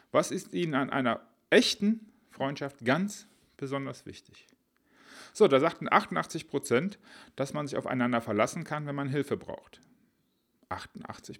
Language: German